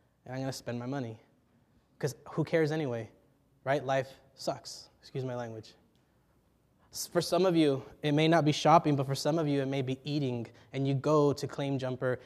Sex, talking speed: male, 200 wpm